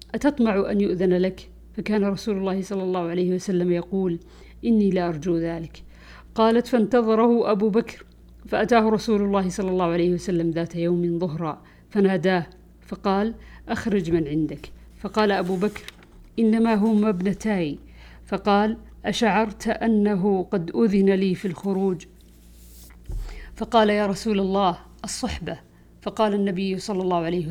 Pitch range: 175-220 Hz